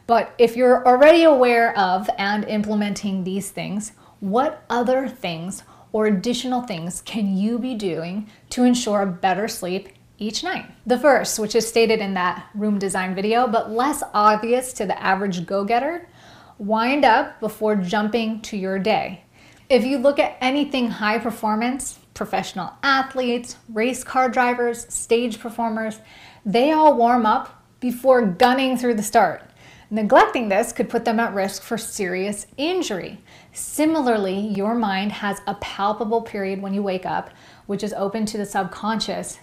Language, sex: English, female